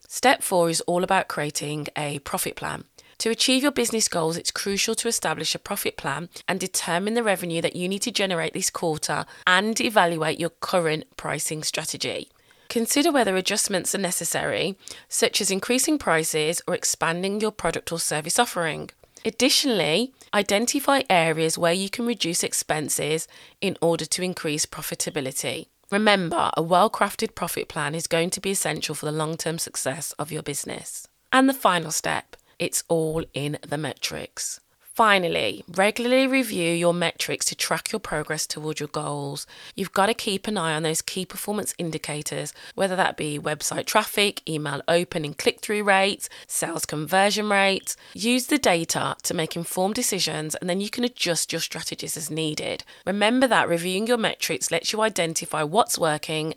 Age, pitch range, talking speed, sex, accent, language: 20-39, 155-205 Hz, 165 wpm, female, British, English